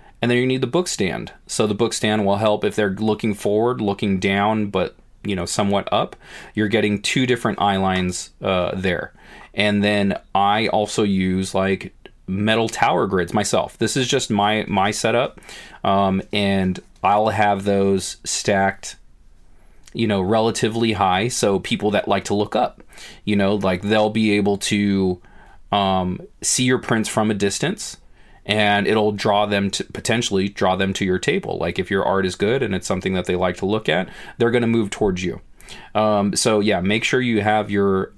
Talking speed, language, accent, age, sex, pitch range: 185 wpm, English, American, 30-49, male, 100-110 Hz